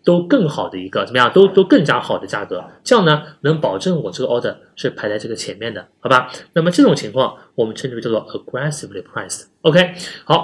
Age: 30-49